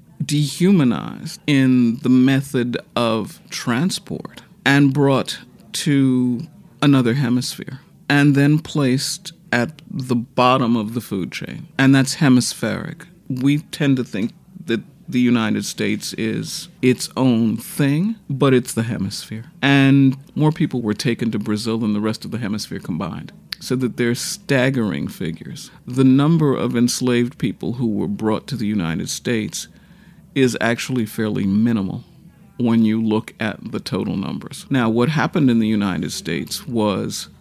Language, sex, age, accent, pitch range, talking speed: English, male, 50-69, American, 115-140 Hz, 145 wpm